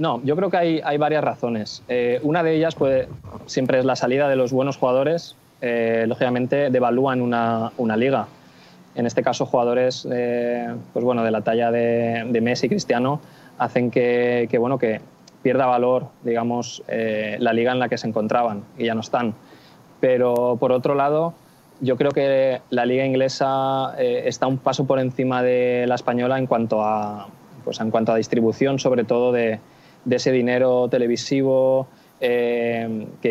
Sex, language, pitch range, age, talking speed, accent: male, Greek, 115-130 Hz, 20-39, 175 wpm, Spanish